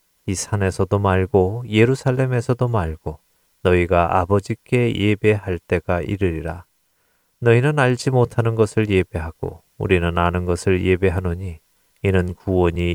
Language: Korean